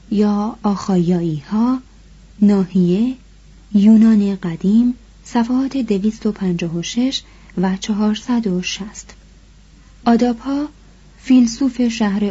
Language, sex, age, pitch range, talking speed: Persian, female, 30-49, 185-240 Hz, 75 wpm